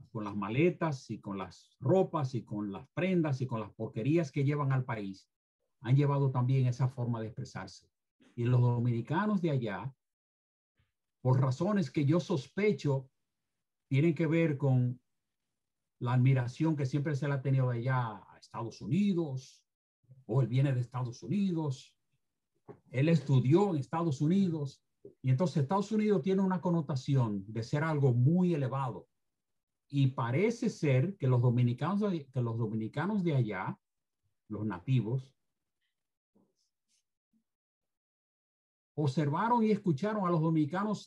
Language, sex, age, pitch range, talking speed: Spanish, male, 50-69, 125-165 Hz, 135 wpm